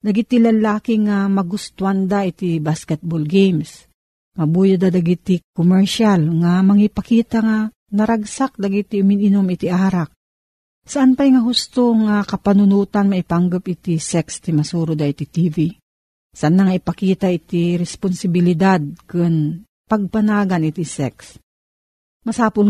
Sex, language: female, Filipino